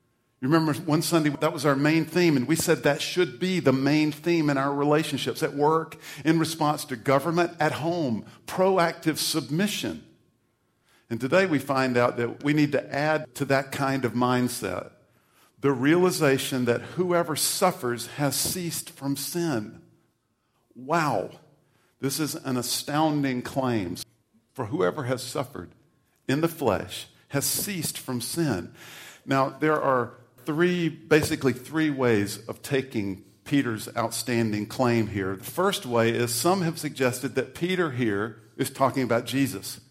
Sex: male